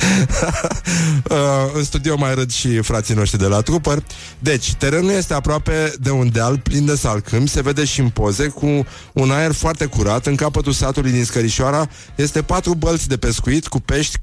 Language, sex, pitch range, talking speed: Romanian, male, 115-150 Hz, 180 wpm